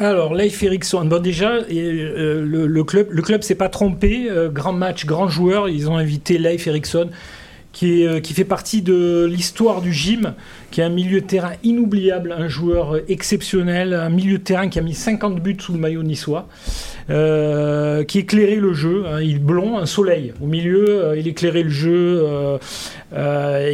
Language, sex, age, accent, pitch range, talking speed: French, male, 40-59, French, 150-190 Hz, 190 wpm